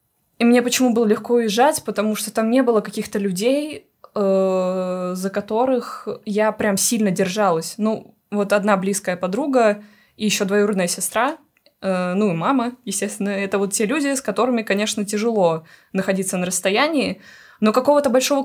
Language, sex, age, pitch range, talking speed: Russian, female, 20-39, 195-235 Hz, 155 wpm